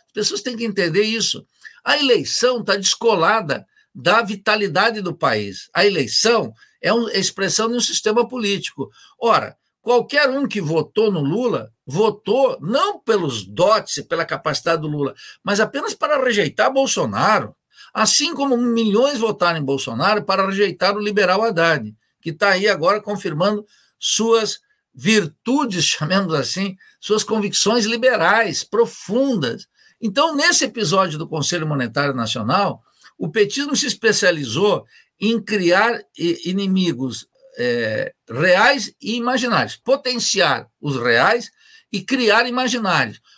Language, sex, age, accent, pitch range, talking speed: Portuguese, male, 60-79, Brazilian, 180-240 Hz, 125 wpm